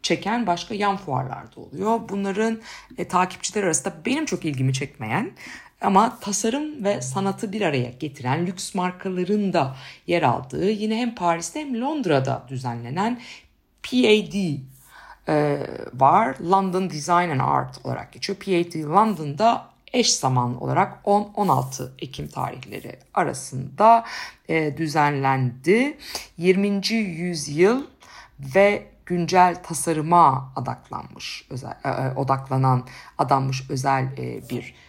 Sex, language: female, Turkish